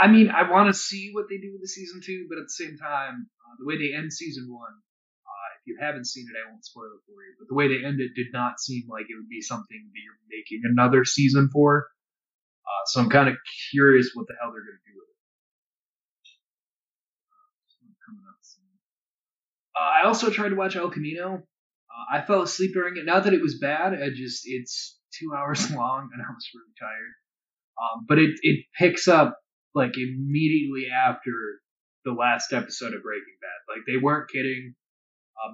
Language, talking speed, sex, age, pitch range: English, 205 wpm, male, 20-39, 125-190 Hz